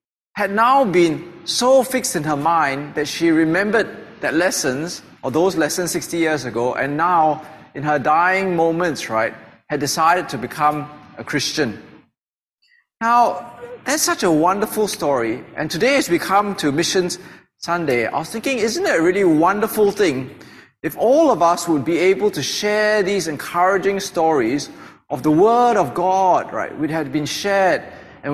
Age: 20-39